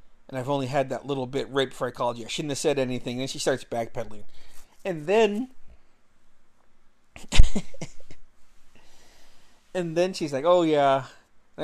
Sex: male